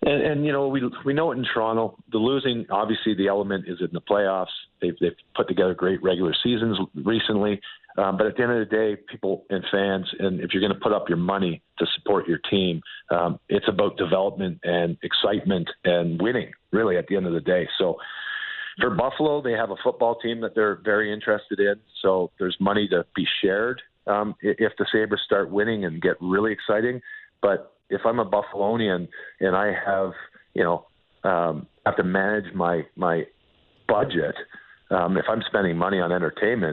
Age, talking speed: 50-69, 195 wpm